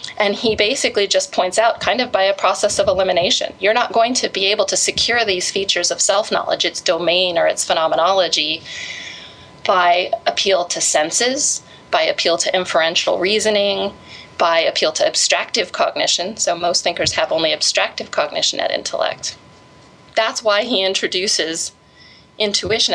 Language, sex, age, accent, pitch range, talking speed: English, female, 30-49, American, 185-230 Hz, 150 wpm